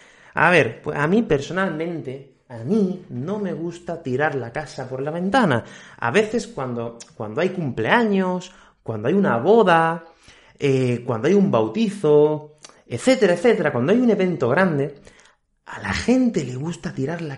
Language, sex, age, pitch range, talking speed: Spanish, male, 30-49, 130-195 Hz, 160 wpm